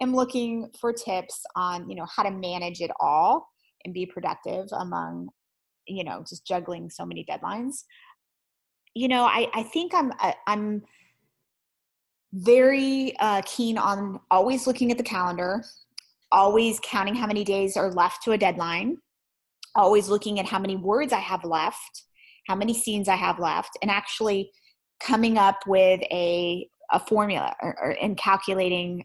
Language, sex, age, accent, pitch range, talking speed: English, female, 20-39, American, 185-230 Hz, 155 wpm